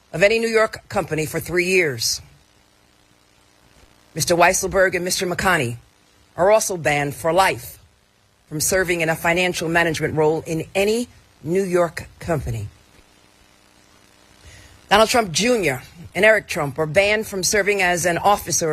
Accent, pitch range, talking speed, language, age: American, 120-195 Hz, 140 wpm, English, 50-69